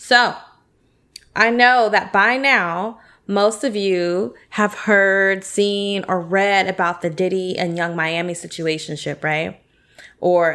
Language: English